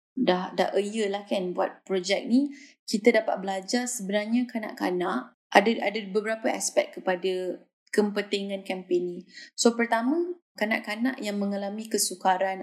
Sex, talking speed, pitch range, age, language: female, 135 wpm, 190-260 Hz, 20-39, Malay